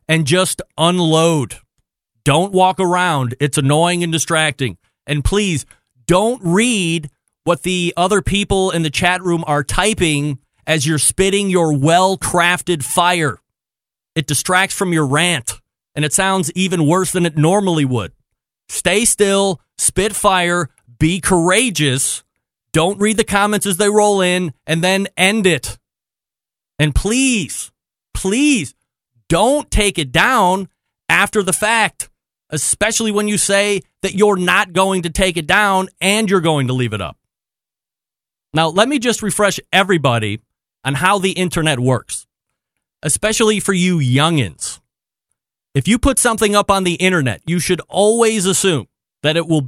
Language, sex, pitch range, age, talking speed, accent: English, male, 150-195 Hz, 30-49, 145 wpm, American